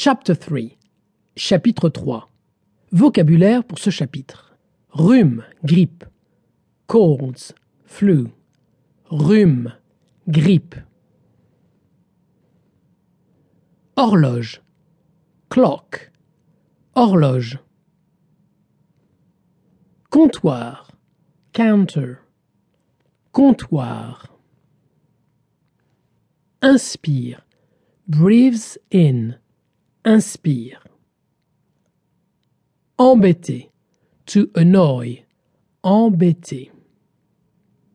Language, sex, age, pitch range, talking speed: French, male, 50-69, 145-200 Hz, 45 wpm